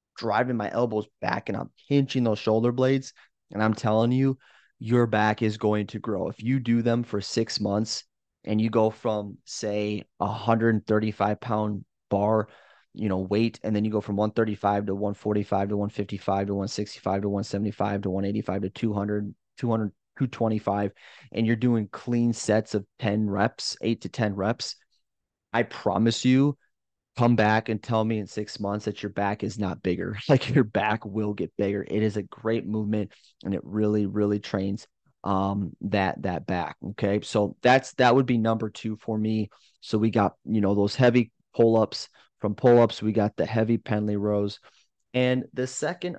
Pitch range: 100-115 Hz